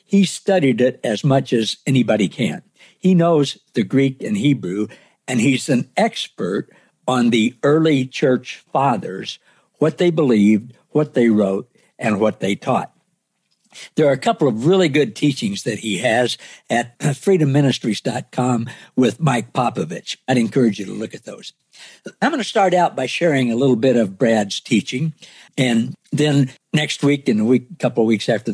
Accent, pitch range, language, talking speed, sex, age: American, 125-165 Hz, English, 170 wpm, male, 60-79